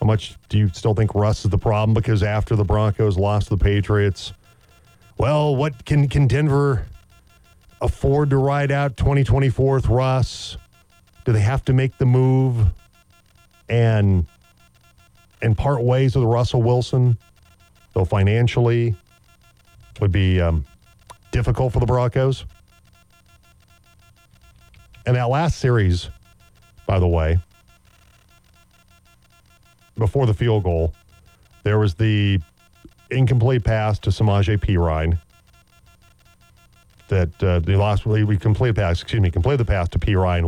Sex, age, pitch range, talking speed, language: male, 40-59, 95-120 Hz, 130 wpm, English